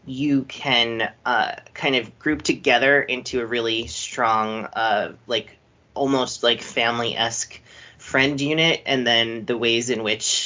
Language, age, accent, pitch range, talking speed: English, 30-49, American, 105-130 Hz, 140 wpm